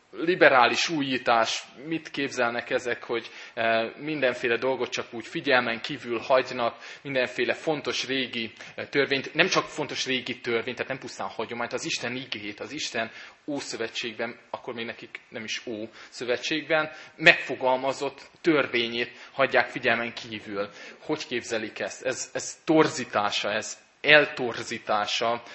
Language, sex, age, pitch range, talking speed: Hungarian, male, 20-39, 115-135 Hz, 120 wpm